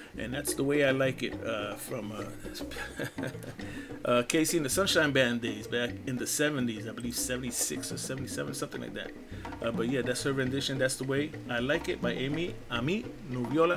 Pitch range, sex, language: 125-150 Hz, male, English